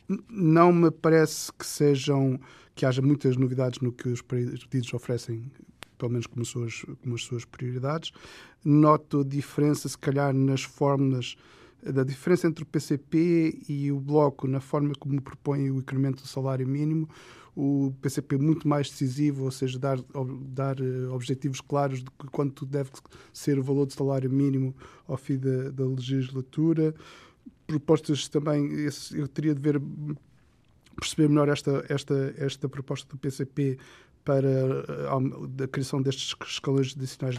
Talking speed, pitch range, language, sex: 150 wpm, 130-150 Hz, Portuguese, male